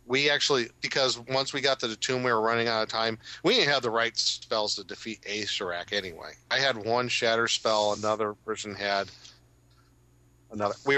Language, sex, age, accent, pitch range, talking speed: English, male, 40-59, American, 105-130 Hz, 190 wpm